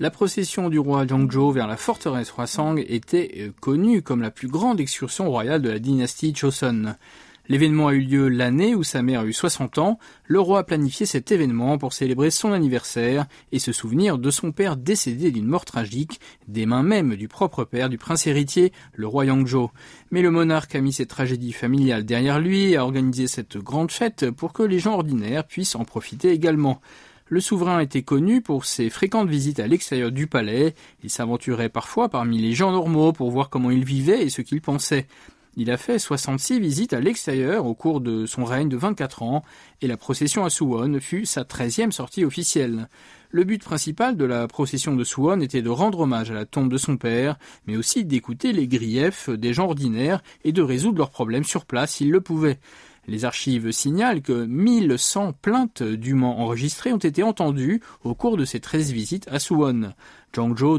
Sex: male